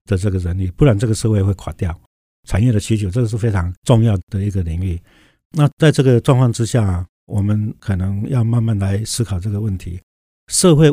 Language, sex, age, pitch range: Chinese, male, 60-79, 95-120 Hz